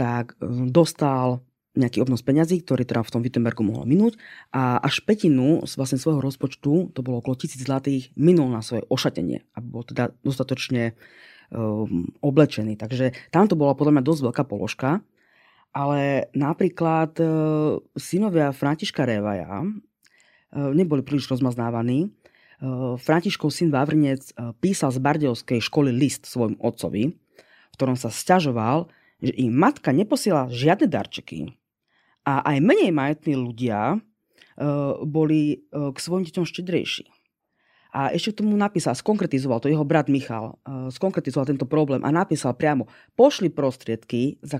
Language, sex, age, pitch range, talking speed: Slovak, female, 20-39, 125-160 Hz, 140 wpm